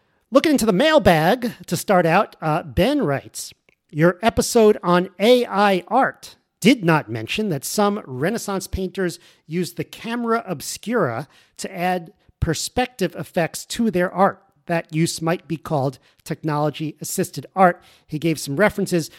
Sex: male